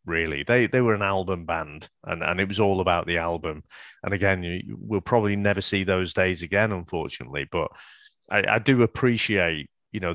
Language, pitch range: English, 95-120 Hz